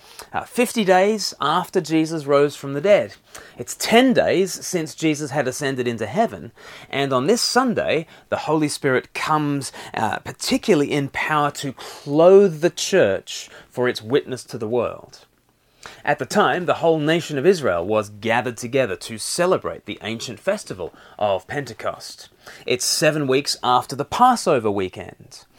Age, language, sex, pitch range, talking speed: 30-49, English, male, 125-175 Hz, 150 wpm